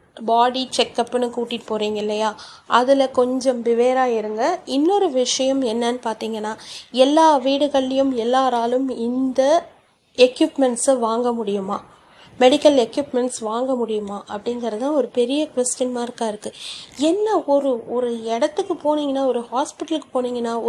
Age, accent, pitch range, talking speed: 30-49, native, 235-300 Hz, 115 wpm